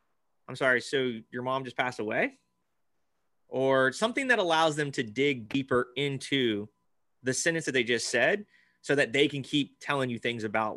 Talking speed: 180 wpm